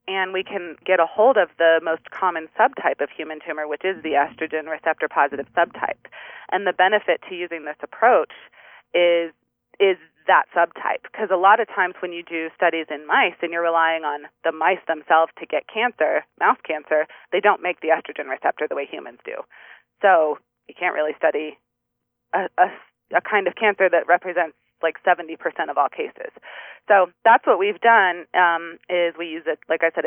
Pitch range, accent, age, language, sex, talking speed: 160-190 Hz, American, 30-49, English, female, 190 wpm